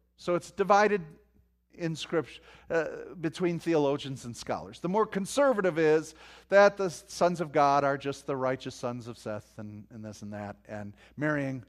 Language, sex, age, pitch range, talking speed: English, male, 40-59, 125-185 Hz, 170 wpm